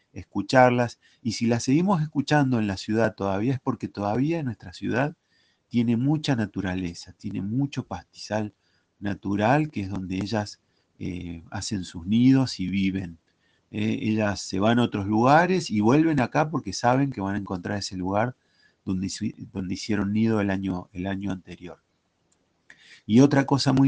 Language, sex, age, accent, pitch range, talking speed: Spanish, male, 40-59, Argentinian, 95-130 Hz, 155 wpm